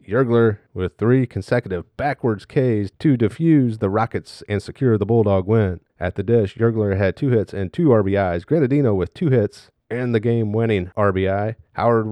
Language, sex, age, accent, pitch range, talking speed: English, male, 30-49, American, 100-125 Hz, 170 wpm